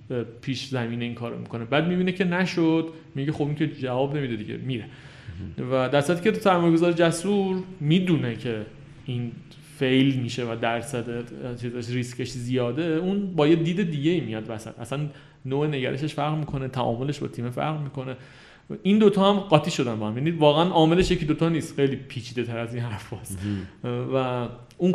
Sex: male